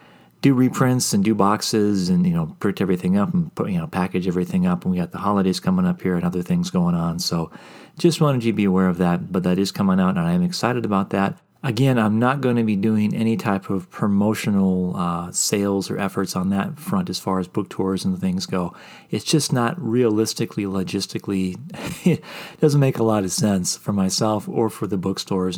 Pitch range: 95-140 Hz